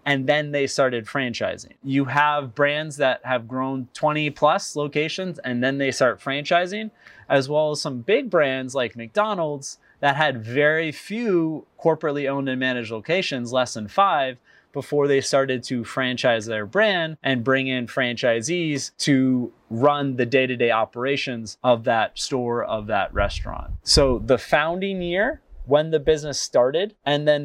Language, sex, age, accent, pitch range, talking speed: English, male, 20-39, American, 130-165 Hz, 155 wpm